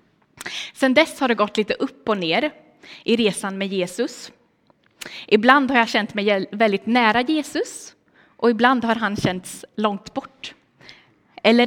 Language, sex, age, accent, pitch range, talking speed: Swedish, female, 20-39, native, 215-275 Hz, 150 wpm